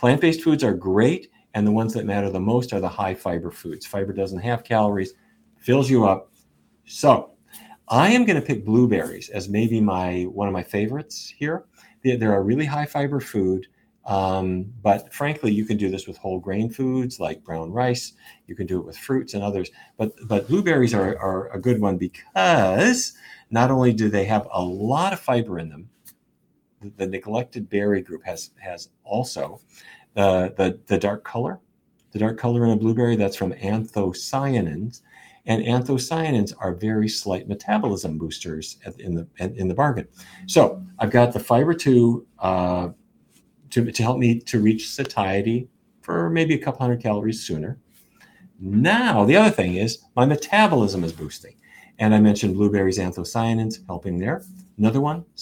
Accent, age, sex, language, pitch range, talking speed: American, 40-59, male, English, 95-125 Hz, 170 wpm